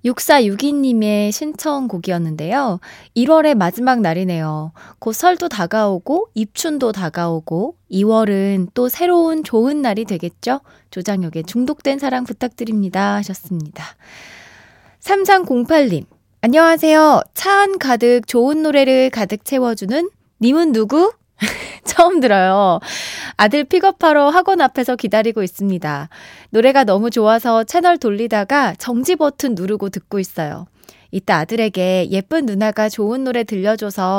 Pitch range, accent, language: 195-275 Hz, native, Korean